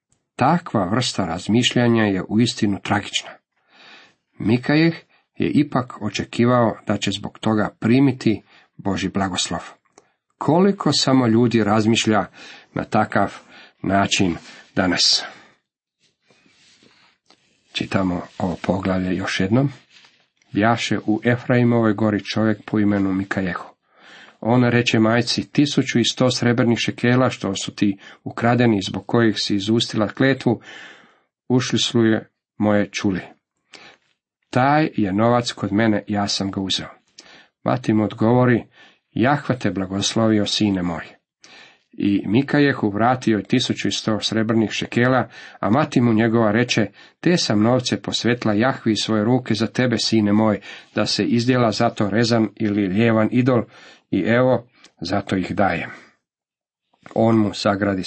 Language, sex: Croatian, male